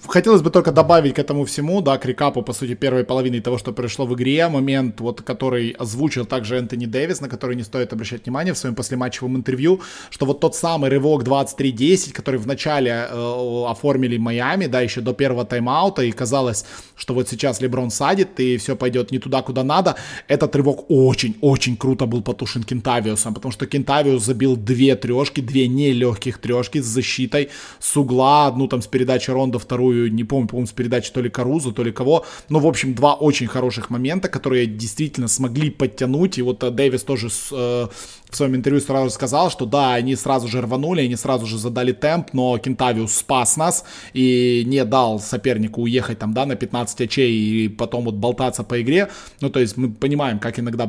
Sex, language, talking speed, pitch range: male, Russian, 195 wpm, 120-140 Hz